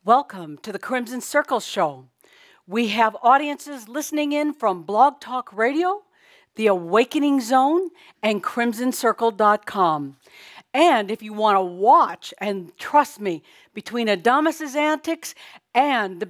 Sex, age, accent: female, 60-79, American